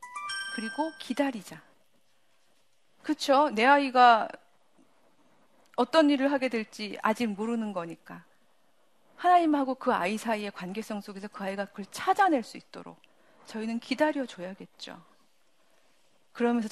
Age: 40-59